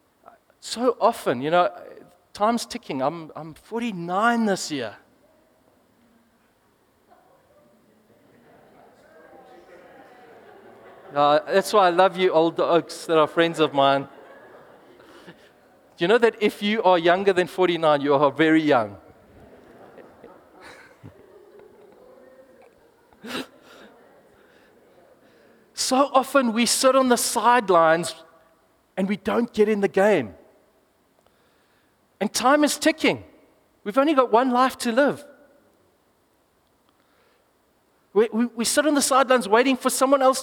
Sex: male